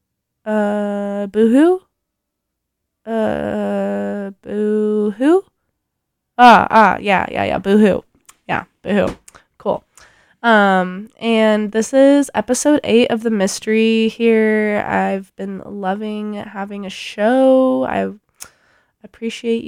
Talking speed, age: 95 wpm, 20-39